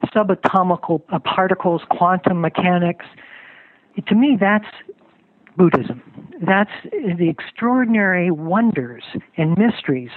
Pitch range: 165-205 Hz